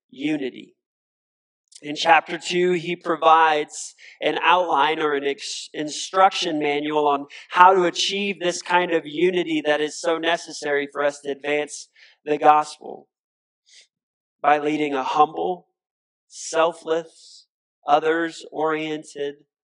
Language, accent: English, American